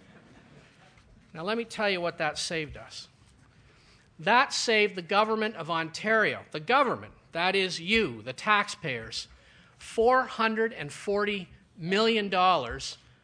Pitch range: 160-220 Hz